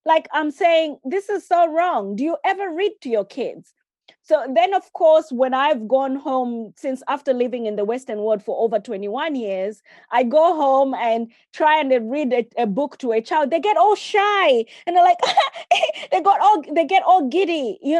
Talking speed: 195 wpm